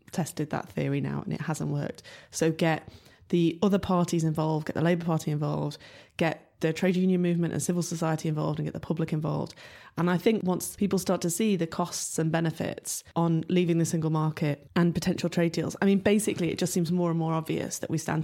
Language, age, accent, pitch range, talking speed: English, 20-39, British, 150-175 Hz, 220 wpm